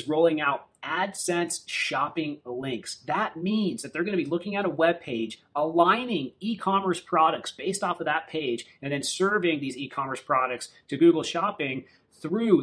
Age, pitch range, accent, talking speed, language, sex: 30-49, 150-190 Hz, American, 165 wpm, English, male